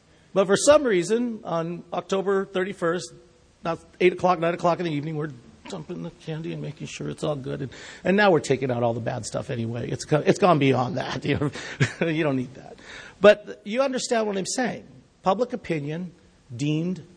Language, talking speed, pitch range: English, 200 wpm, 135-180 Hz